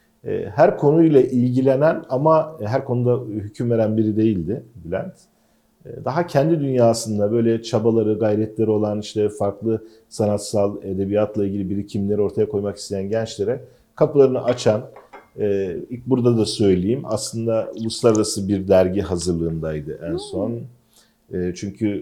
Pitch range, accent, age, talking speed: 95-120 Hz, native, 40-59, 115 wpm